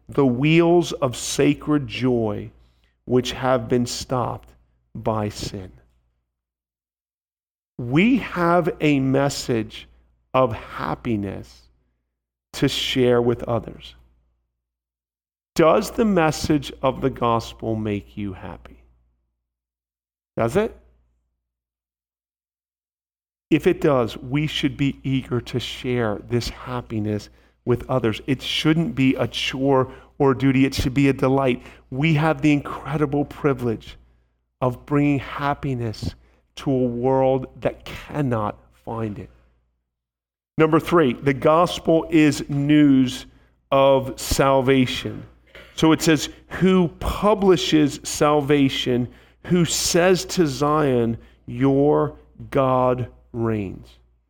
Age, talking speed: 40-59, 105 wpm